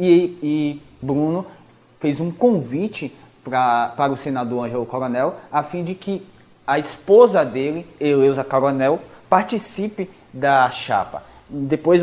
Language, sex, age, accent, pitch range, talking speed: Portuguese, male, 20-39, Brazilian, 125-160 Hz, 120 wpm